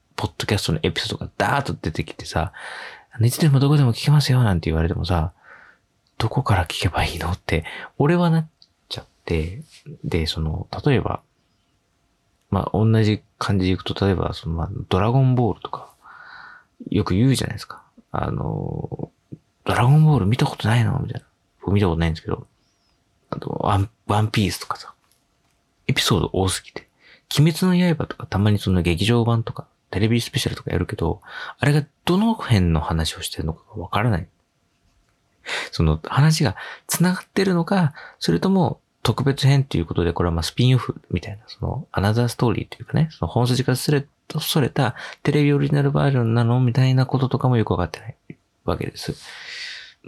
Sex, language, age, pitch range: male, Japanese, 30-49, 95-145 Hz